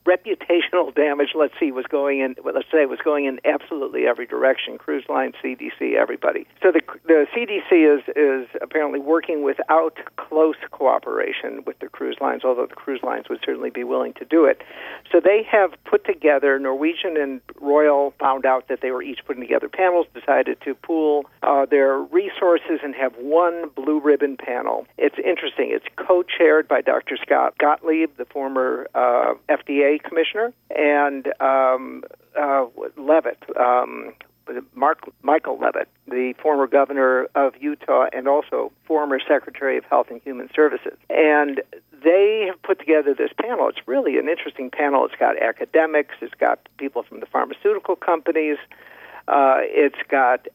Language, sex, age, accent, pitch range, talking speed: English, male, 50-69, American, 140-185 Hz, 160 wpm